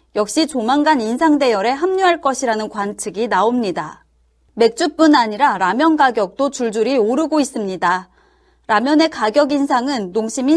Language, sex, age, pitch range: Korean, female, 30-49, 225-315 Hz